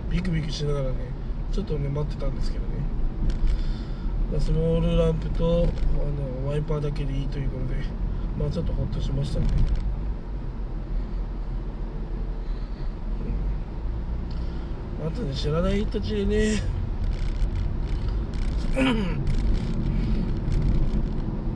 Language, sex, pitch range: Japanese, male, 130-155 Hz